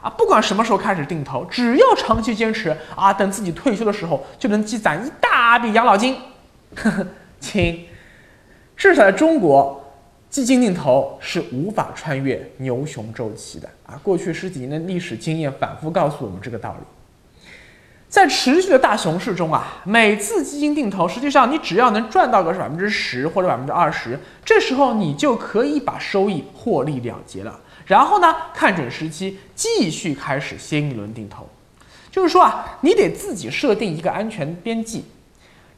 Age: 20-39